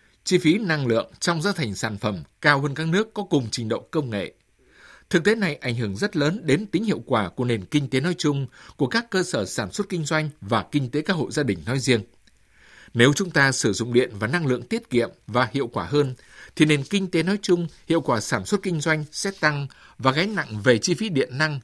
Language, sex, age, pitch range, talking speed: Vietnamese, male, 60-79, 125-180 Hz, 250 wpm